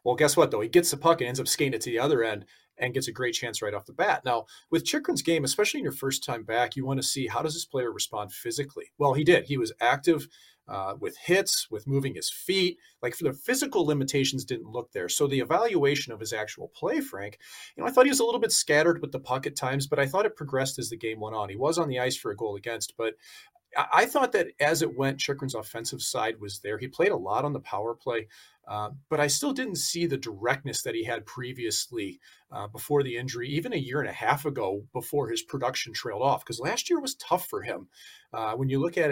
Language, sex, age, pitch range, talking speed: English, male, 40-59, 125-175 Hz, 260 wpm